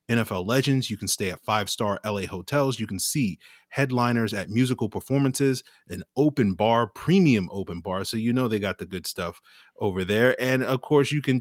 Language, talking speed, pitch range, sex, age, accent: English, 195 wpm, 105-135 Hz, male, 30-49, American